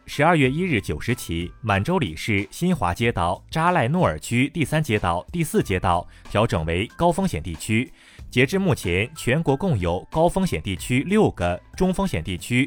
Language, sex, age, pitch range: Chinese, male, 30-49, 95-150 Hz